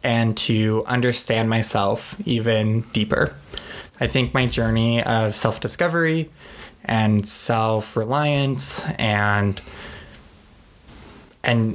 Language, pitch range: English, 110-125 Hz